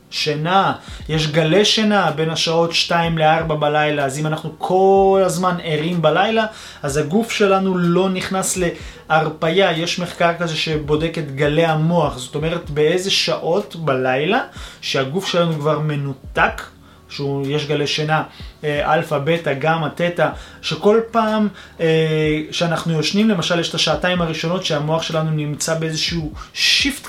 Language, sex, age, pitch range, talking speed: Hebrew, male, 20-39, 155-195 Hz, 130 wpm